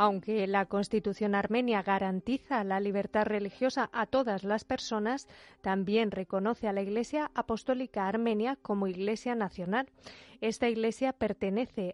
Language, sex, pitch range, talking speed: Spanish, female, 200-230 Hz, 125 wpm